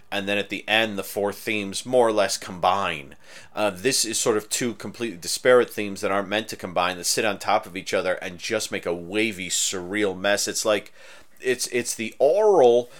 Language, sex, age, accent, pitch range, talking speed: English, male, 30-49, American, 105-140 Hz, 210 wpm